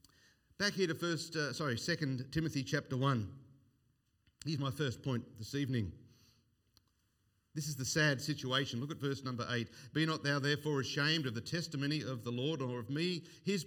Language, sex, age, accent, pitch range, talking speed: English, male, 50-69, Australian, 125-175 Hz, 180 wpm